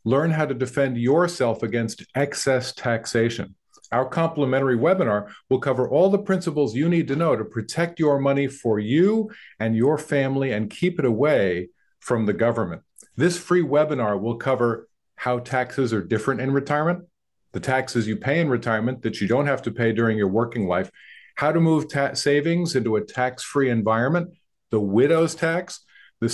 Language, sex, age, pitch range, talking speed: English, male, 50-69, 120-155 Hz, 170 wpm